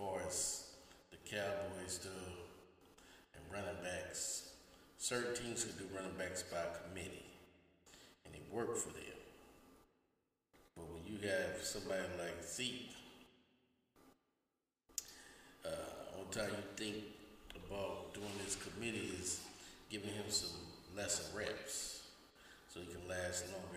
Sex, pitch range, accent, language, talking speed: male, 85-100 Hz, American, English, 115 wpm